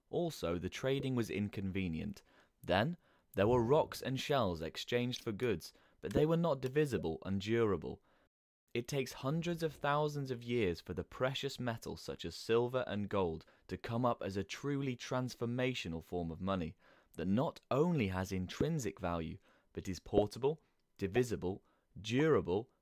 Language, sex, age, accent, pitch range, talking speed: English, male, 20-39, British, 95-130 Hz, 155 wpm